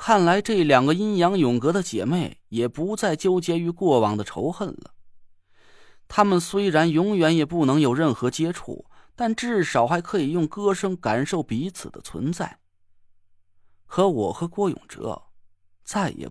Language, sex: Chinese, male